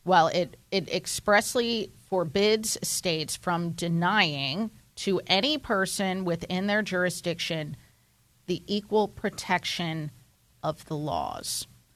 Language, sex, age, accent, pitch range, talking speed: English, female, 30-49, American, 150-190 Hz, 100 wpm